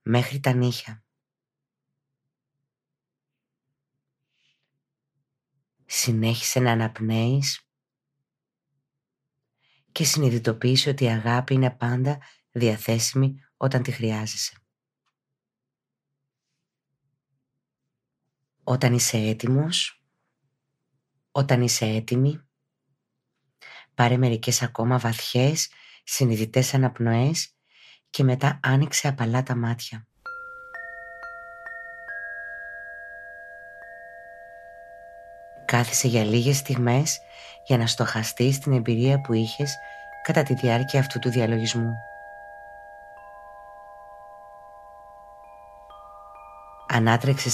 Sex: female